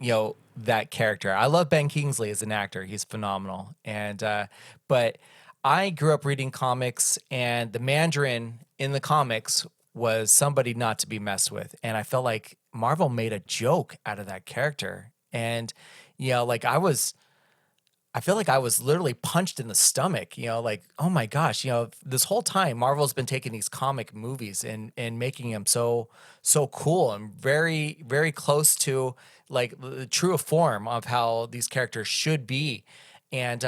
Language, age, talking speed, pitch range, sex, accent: English, 30-49, 180 wpm, 115-145 Hz, male, American